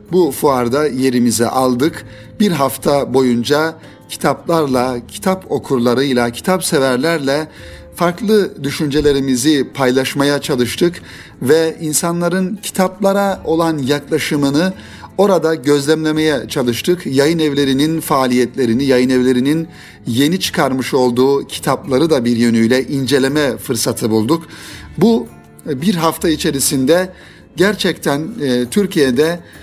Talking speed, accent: 90 wpm, native